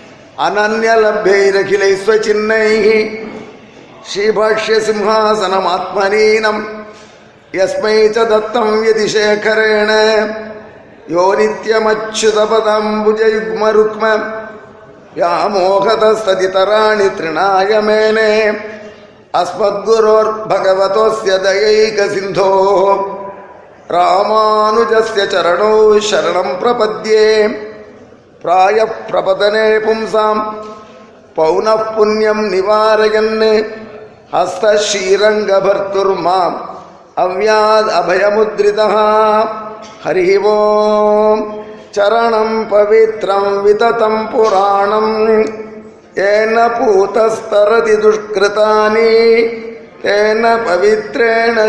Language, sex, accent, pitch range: Tamil, male, native, 205-220 Hz